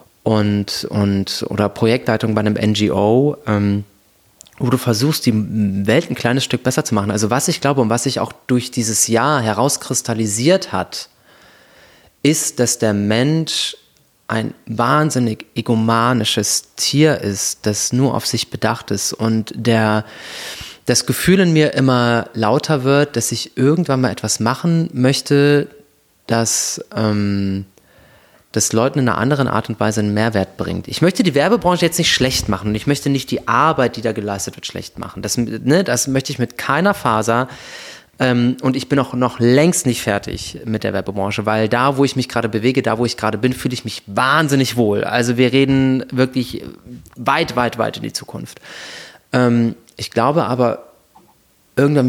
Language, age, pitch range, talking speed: German, 30-49, 110-135 Hz, 165 wpm